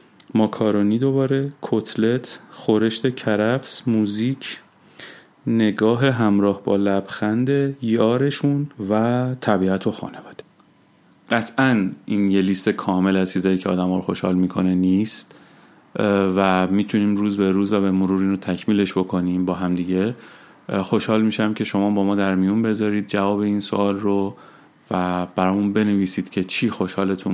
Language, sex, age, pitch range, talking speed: Persian, male, 30-49, 95-110 Hz, 130 wpm